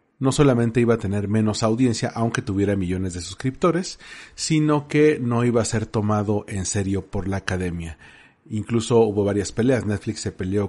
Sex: male